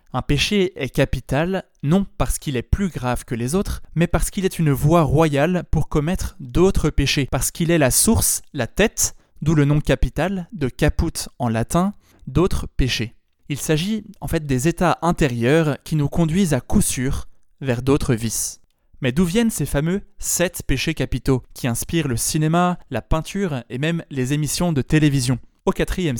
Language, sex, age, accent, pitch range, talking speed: French, male, 20-39, French, 130-170 Hz, 185 wpm